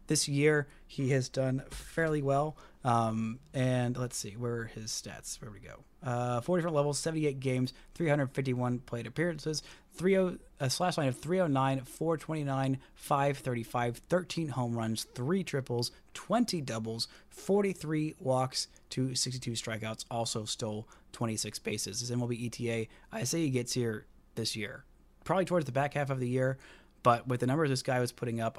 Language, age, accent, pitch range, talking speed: English, 30-49, American, 115-140 Hz, 160 wpm